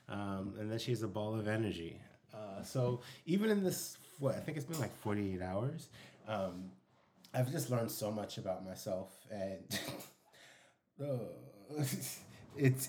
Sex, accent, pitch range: male, American, 100-135 Hz